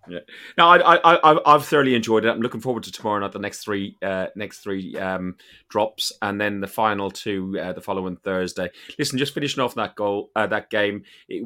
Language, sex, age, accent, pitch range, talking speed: English, male, 30-49, British, 100-125 Hz, 220 wpm